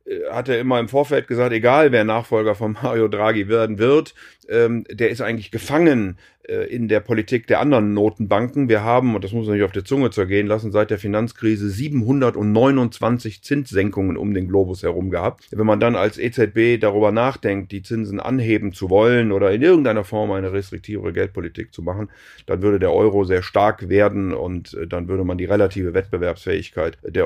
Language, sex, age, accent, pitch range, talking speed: German, male, 40-59, German, 95-115 Hz, 180 wpm